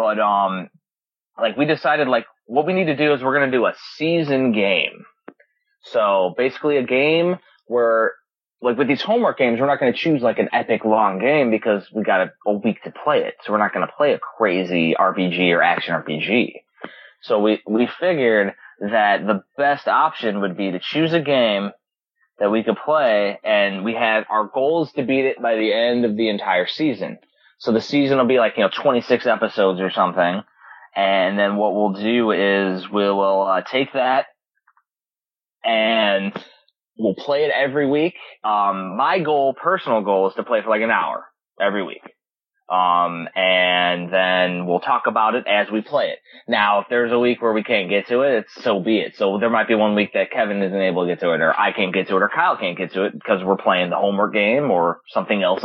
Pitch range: 95-130 Hz